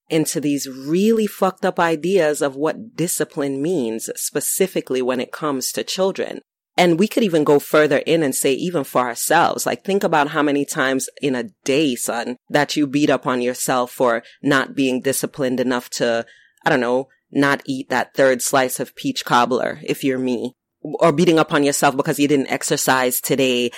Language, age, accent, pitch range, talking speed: English, 30-49, American, 130-155 Hz, 185 wpm